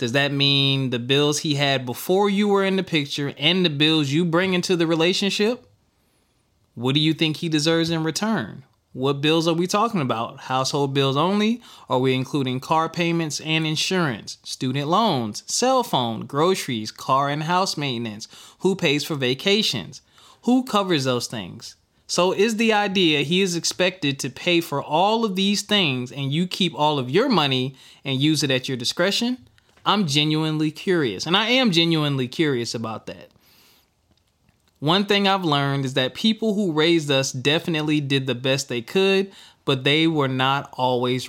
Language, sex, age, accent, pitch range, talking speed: English, male, 20-39, American, 130-180 Hz, 175 wpm